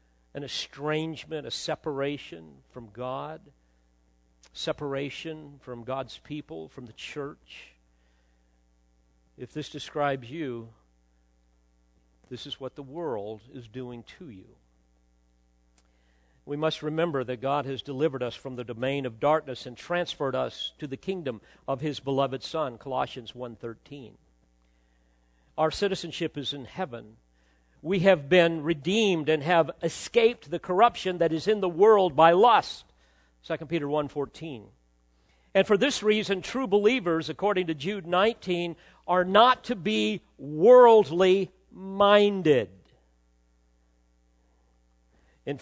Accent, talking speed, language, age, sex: American, 120 wpm, English, 50-69, male